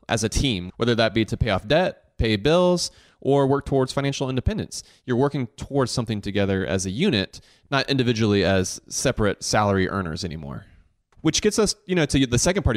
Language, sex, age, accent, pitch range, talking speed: English, male, 30-49, American, 100-135 Hz, 195 wpm